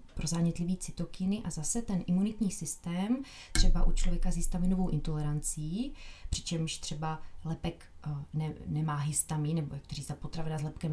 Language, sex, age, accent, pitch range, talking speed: Czech, female, 30-49, native, 160-180 Hz, 130 wpm